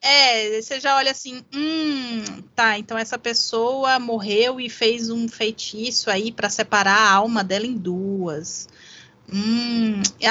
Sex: female